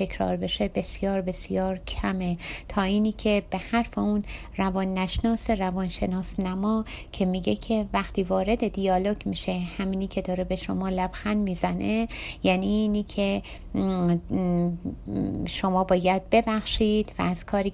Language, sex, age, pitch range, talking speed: Persian, female, 30-49, 185-210 Hz, 135 wpm